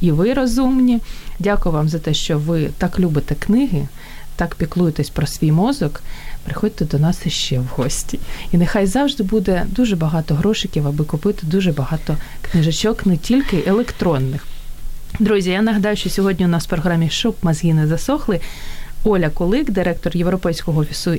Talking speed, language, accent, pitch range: 160 wpm, Ukrainian, native, 150-195 Hz